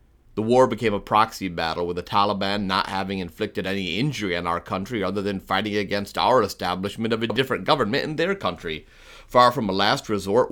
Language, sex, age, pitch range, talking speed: English, male, 30-49, 95-115 Hz, 200 wpm